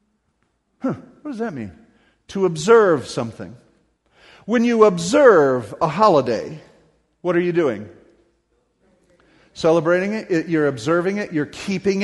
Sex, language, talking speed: male, English, 125 wpm